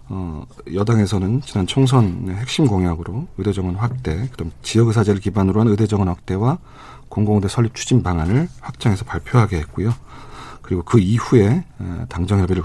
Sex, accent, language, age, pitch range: male, native, Korean, 40-59, 95-125 Hz